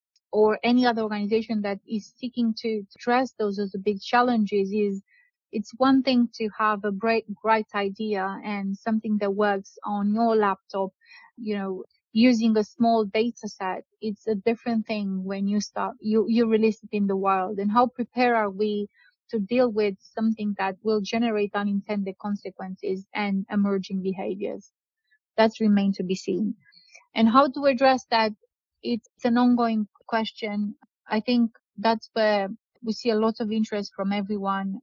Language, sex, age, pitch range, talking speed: English, female, 30-49, 200-225 Hz, 165 wpm